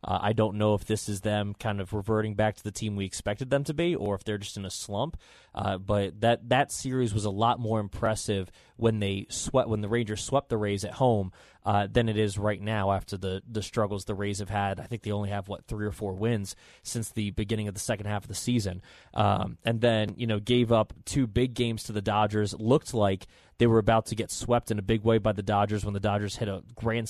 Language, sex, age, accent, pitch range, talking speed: English, male, 20-39, American, 105-120 Hz, 265 wpm